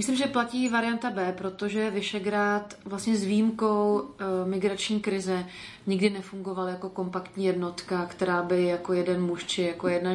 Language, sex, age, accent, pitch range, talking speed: Czech, female, 30-49, native, 175-190 Hz, 150 wpm